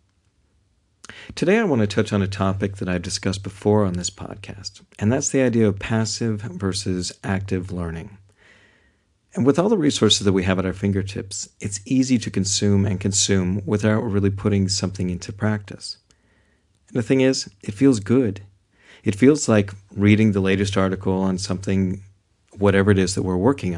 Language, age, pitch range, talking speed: English, 50-69, 95-105 Hz, 175 wpm